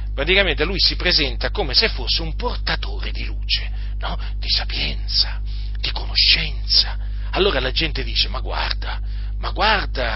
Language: Italian